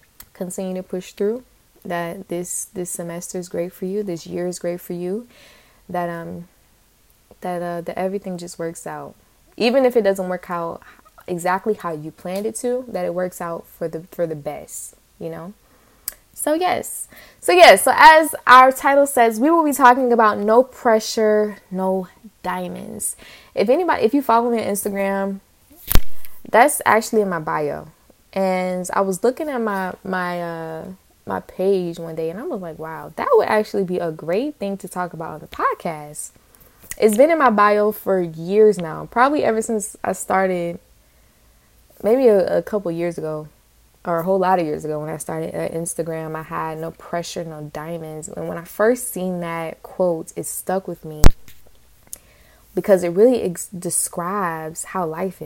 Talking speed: 180 wpm